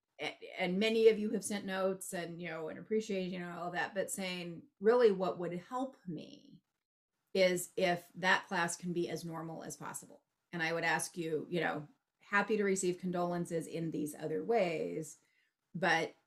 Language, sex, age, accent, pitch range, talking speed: English, female, 30-49, American, 160-200 Hz, 180 wpm